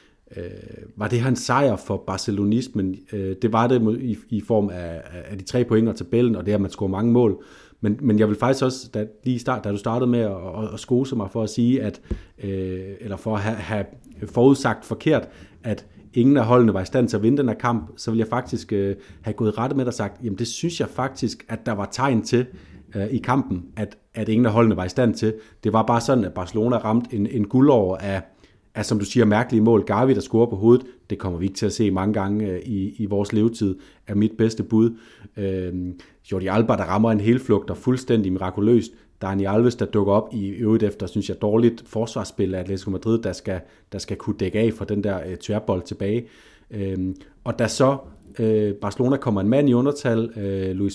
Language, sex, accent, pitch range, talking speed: Danish, male, native, 100-120 Hz, 220 wpm